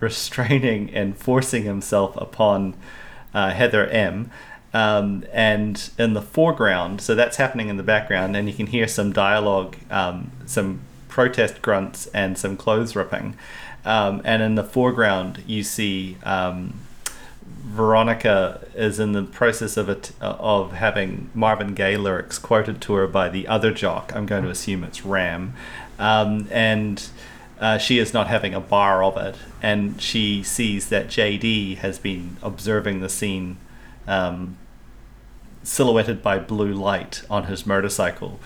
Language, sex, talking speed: English, male, 150 wpm